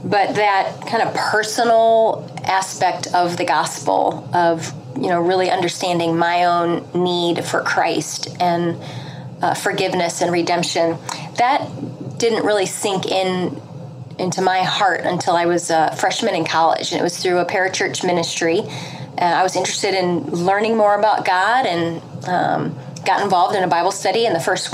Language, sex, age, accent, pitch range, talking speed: English, female, 30-49, American, 160-185 Hz, 165 wpm